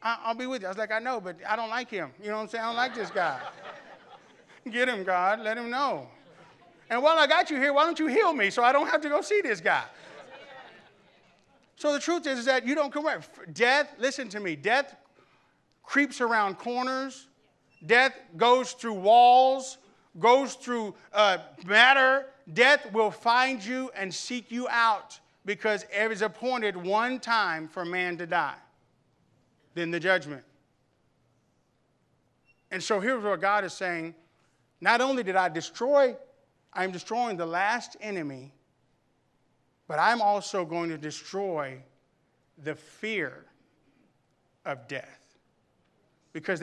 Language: English